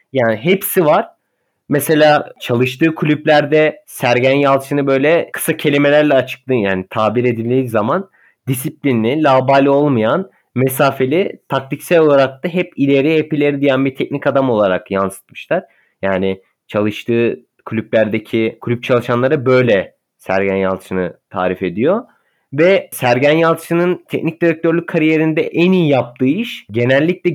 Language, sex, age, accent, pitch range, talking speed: Turkish, male, 30-49, native, 120-155 Hz, 120 wpm